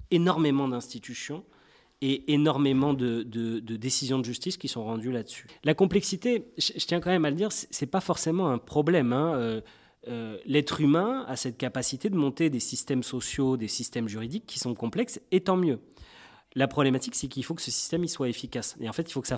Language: French